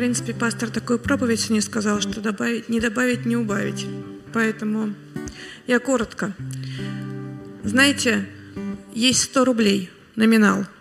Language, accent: Russian, native